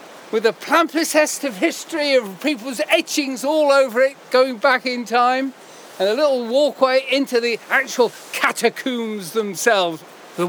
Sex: male